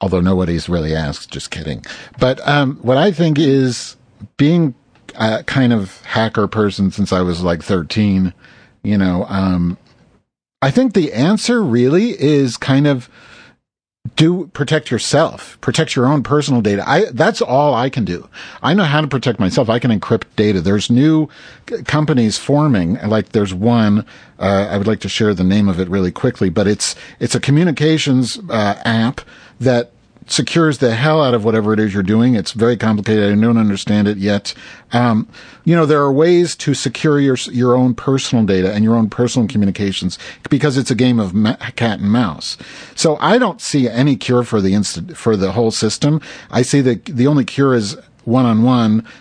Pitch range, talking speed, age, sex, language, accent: 100-135 Hz, 190 wpm, 50-69, male, English, American